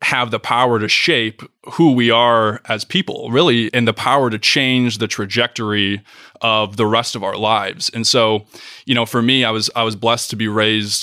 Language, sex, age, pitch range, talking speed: English, male, 20-39, 110-120 Hz, 205 wpm